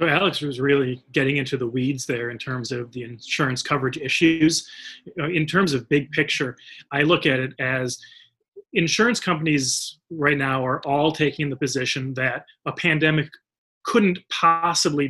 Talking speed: 155 wpm